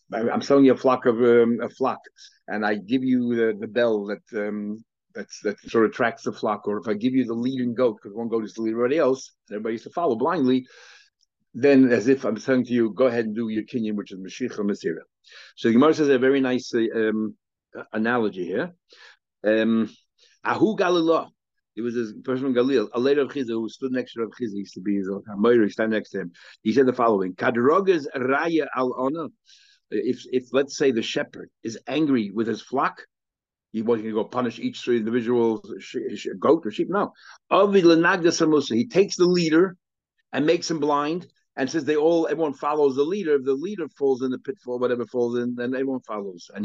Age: 50-69